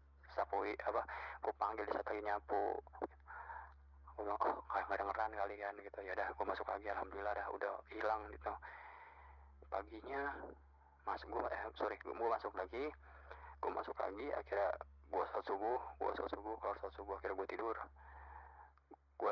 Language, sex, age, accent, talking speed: Indonesian, male, 30-49, native, 145 wpm